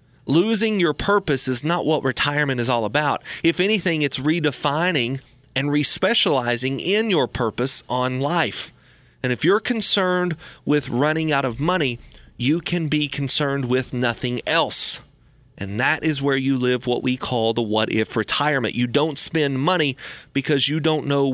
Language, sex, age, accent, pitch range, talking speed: English, male, 30-49, American, 125-155 Hz, 160 wpm